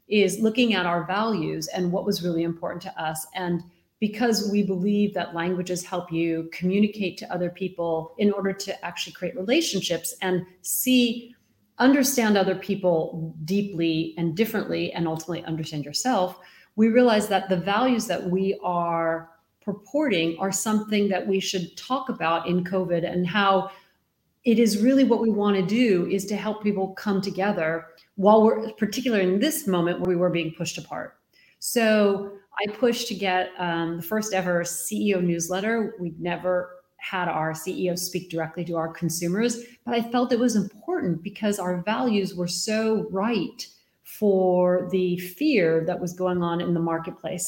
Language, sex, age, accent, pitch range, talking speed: English, female, 40-59, American, 175-210 Hz, 165 wpm